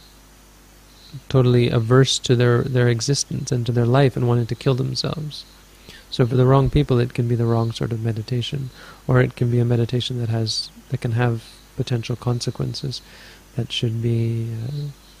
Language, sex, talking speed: English, male, 180 wpm